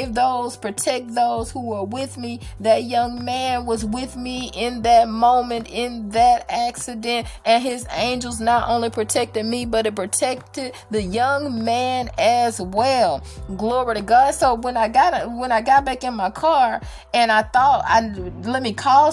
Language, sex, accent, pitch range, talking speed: English, female, American, 200-250 Hz, 175 wpm